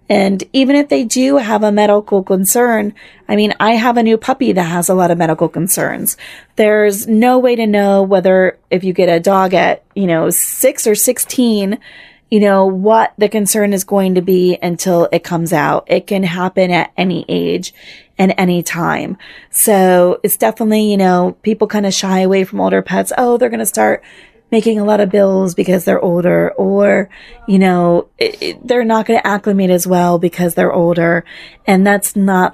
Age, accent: 20-39, American